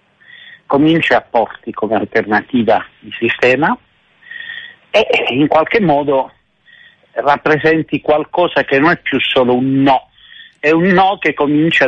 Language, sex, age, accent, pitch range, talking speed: Italian, male, 50-69, native, 125-185 Hz, 125 wpm